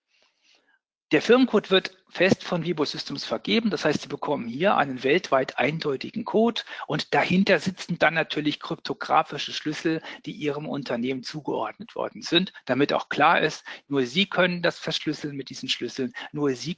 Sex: male